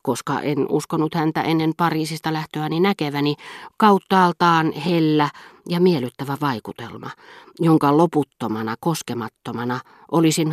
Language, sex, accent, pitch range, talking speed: Finnish, female, native, 130-170 Hz, 95 wpm